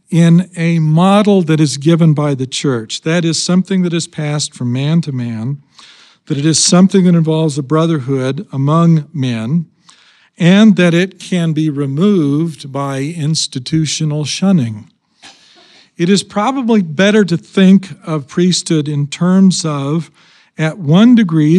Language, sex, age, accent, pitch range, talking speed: English, male, 50-69, American, 135-170 Hz, 145 wpm